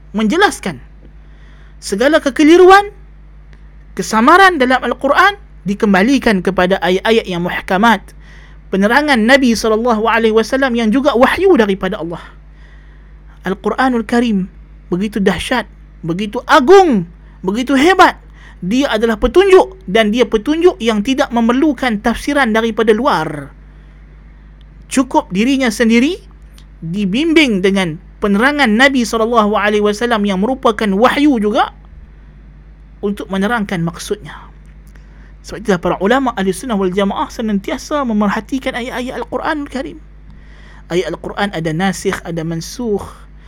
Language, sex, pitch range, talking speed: Malay, male, 185-245 Hz, 105 wpm